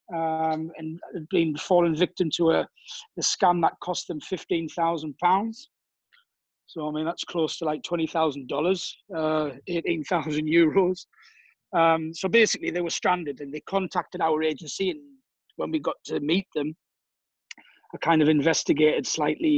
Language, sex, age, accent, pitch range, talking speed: English, male, 30-49, British, 155-185 Hz, 145 wpm